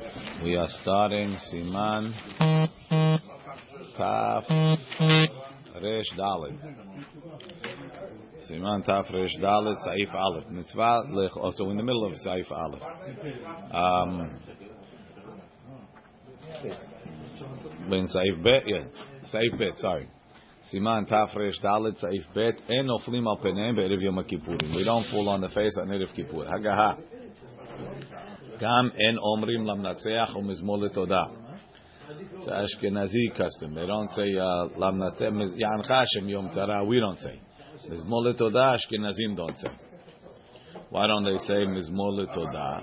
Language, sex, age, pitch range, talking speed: English, male, 40-59, 95-115 Hz, 90 wpm